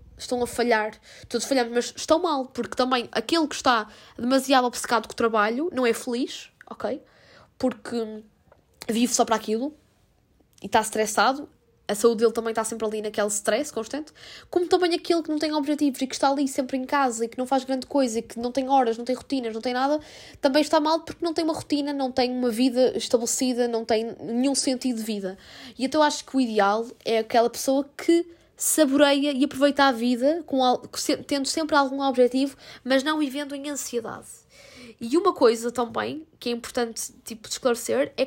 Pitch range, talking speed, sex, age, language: 235-285 Hz, 200 wpm, female, 10-29, Portuguese